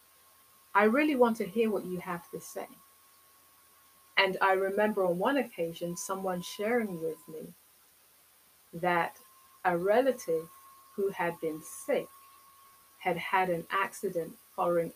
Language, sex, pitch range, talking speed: English, female, 170-220 Hz, 130 wpm